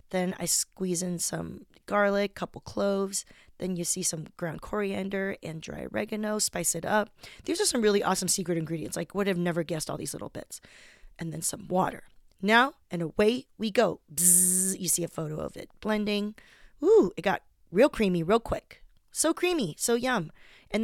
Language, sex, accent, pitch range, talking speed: English, female, American, 175-220 Hz, 185 wpm